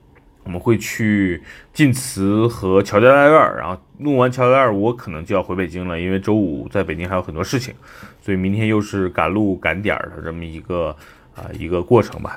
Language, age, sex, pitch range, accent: Chinese, 30-49, male, 90-115 Hz, native